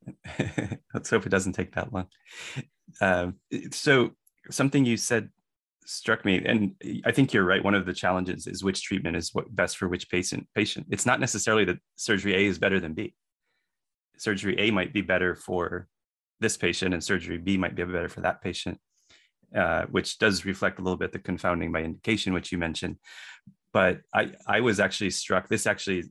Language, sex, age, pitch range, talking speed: English, male, 30-49, 90-100 Hz, 190 wpm